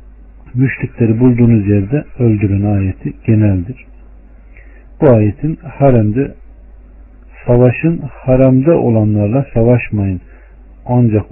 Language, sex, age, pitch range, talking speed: Turkish, male, 50-69, 100-130 Hz, 75 wpm